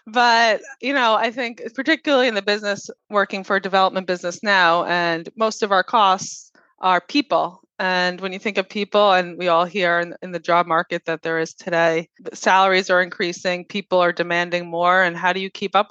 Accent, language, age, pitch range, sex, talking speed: American, English, 20-39, 180-205 Hz, female, 205 wpm